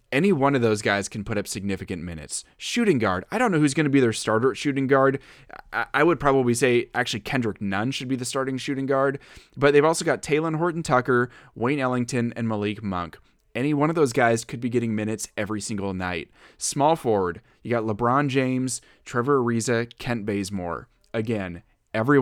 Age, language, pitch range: 20-39, English, 100-135 Hz